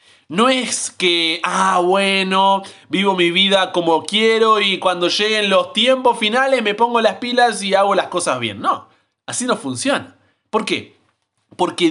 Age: 30-49